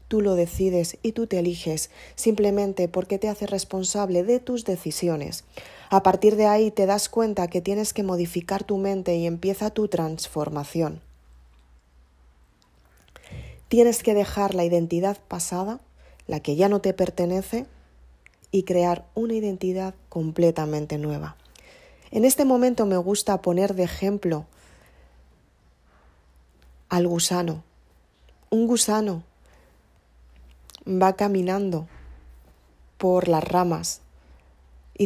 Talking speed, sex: 115 wpm, female